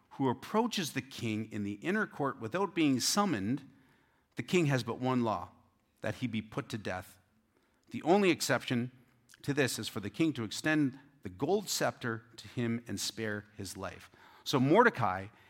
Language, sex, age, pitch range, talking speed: English, male, 40-59, 100-135 Hz, 175 wpm